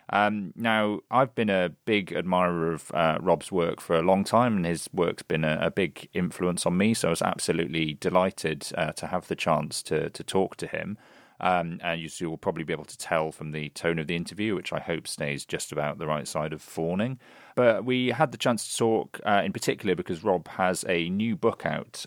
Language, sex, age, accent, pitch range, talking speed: English, male, 30-49, British, 80-105 Hz, 225 wpm